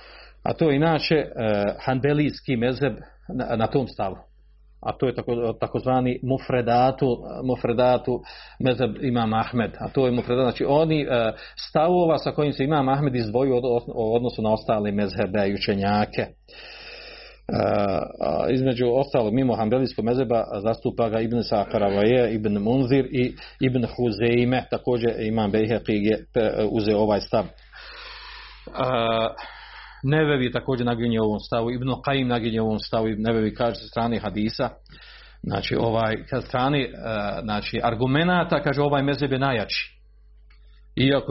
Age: 40-59